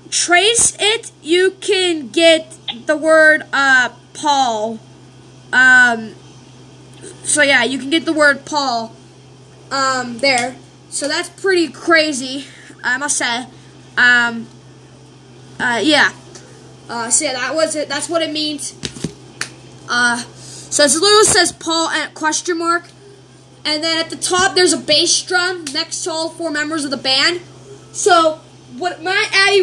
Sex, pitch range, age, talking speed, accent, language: female, 285-360 Hz, 20-39, 140 wpm, American, English